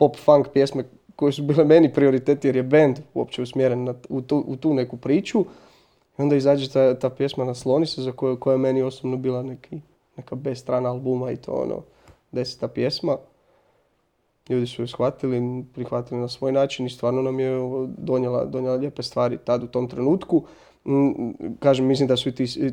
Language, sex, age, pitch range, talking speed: Croatian, male, 20-39, 125-145 Hz, 190 wpm